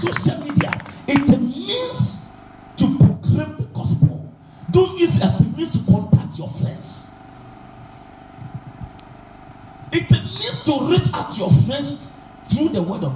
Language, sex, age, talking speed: English, male, 50-69, 135 wpm